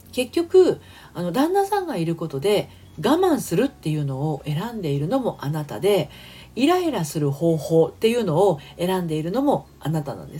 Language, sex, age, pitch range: Japanese, female, 40-59, 155-250 Hz